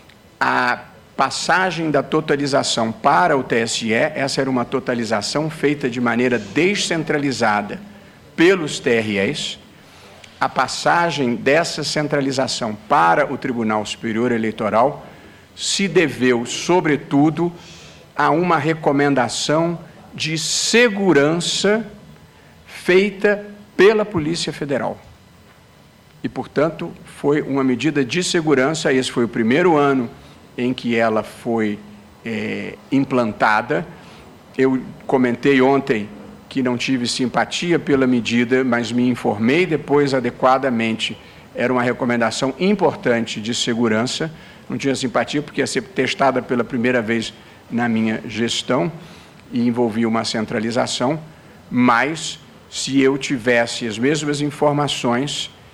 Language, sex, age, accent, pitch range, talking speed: Portuguese, male, 60-79, Brazilian, 120-150 Hz, 110 wpm